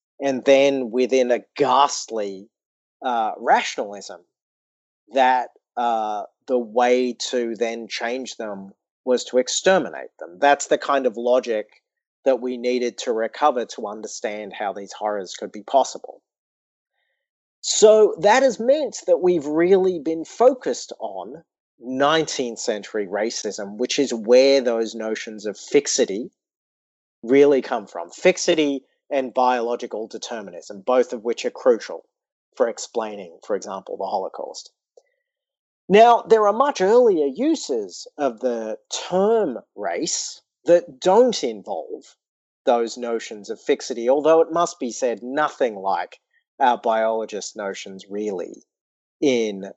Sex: male